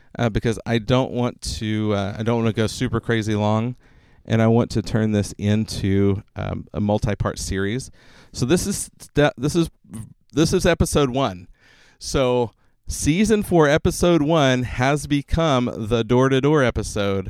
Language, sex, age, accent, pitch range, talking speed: English, male, 40-59, American, 110-140 Hz, 155 wpm